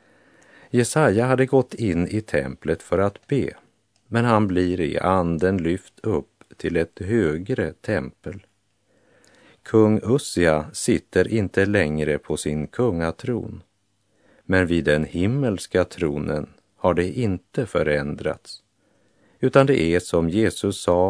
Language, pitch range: Polish, 80-110 Hz